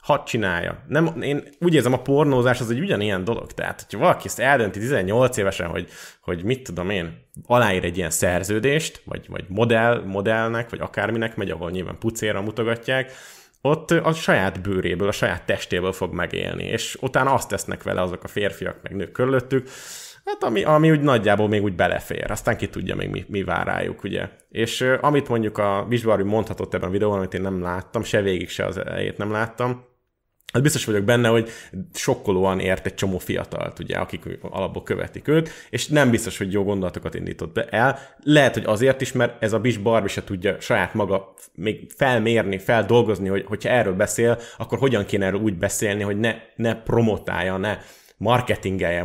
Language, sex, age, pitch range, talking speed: Hungarian, male, 20-39, 100-125 Hz, 180 wpm